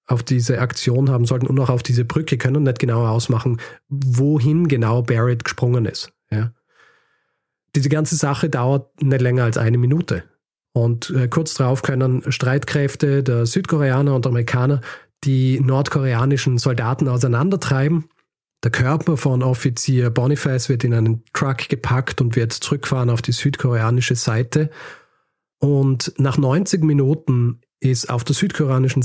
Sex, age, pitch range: male, 40-59, 120-145 Hz